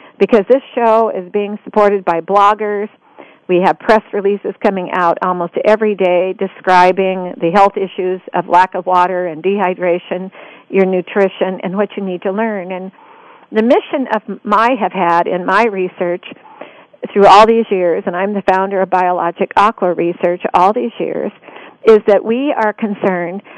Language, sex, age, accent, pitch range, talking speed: English, female, 50-69, American, 180-220 Hz, 165 wpm